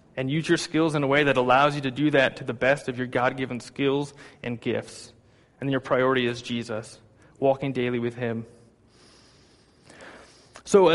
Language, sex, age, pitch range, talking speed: English, male, 20-39, 125-145 Hz, 175 wpm